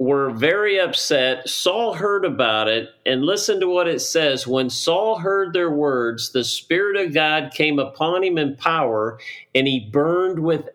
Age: 50-69